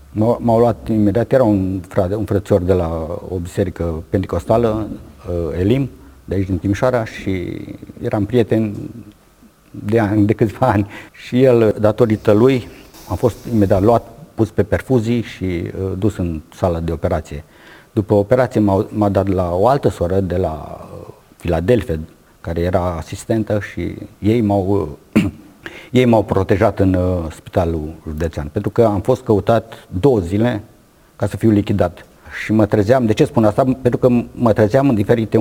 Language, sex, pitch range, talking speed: Romanian, male, 95-115 Hz, 155 wpm